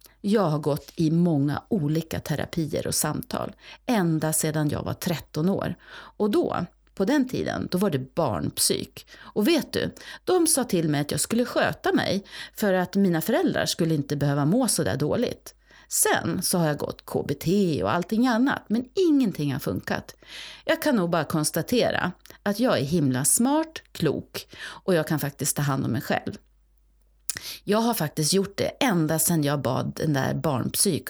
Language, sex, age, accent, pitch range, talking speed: Swedish, female, 40-59, native, 155-235 Hz, 180 wpm